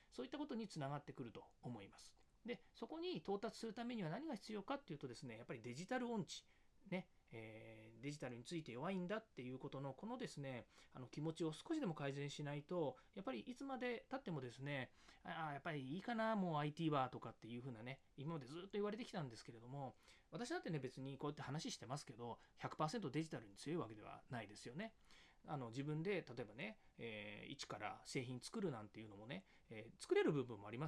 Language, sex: Japanese, male